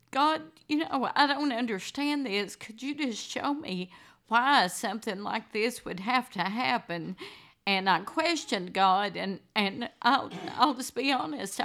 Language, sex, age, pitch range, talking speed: English, female, 50-69, 195-250 Hz, 160 wpm